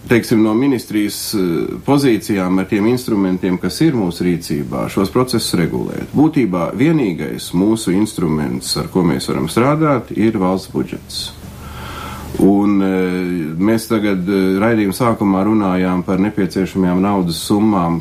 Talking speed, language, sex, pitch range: 120 wpm, Russian, male, 85-110 Hz